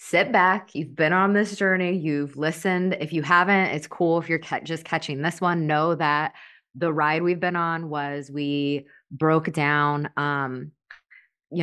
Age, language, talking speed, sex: 20-39, English, 175 wpm, female